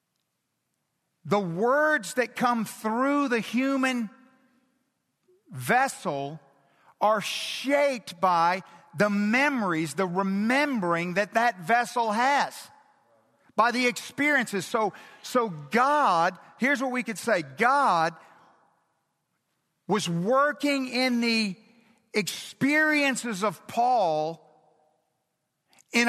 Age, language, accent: 50-69, English, American